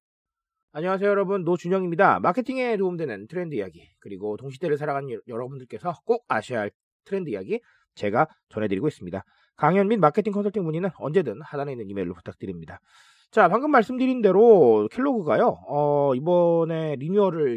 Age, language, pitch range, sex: 30-49, Korean, 150-235 Hz, male